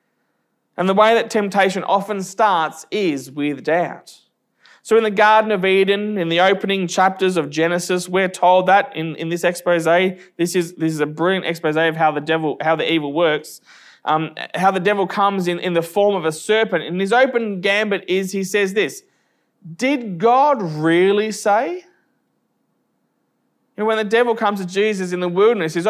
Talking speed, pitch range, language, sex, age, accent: 185 wpm, 175-220 Hz, English, male, 20-39, Australian